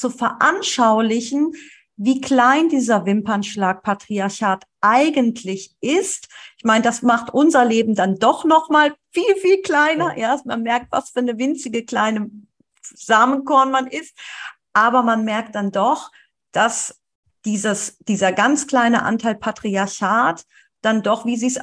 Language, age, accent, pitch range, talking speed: German, 40-59, German, 210-265 Hz, 135 wpm